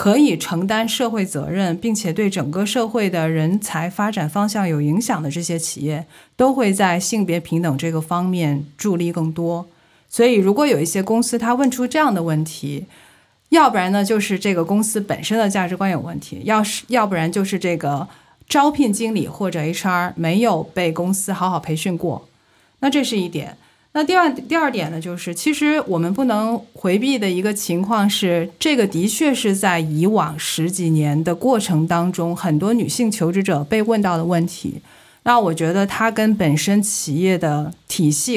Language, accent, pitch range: Chinese, native, 170-225 Hz